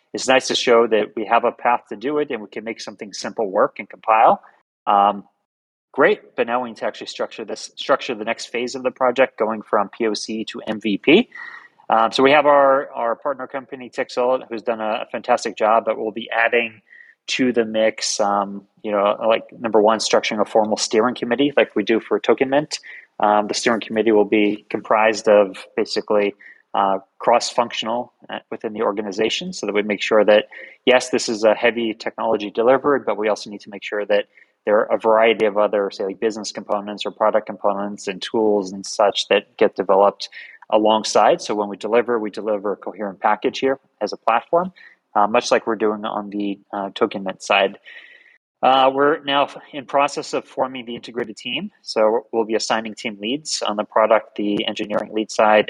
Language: English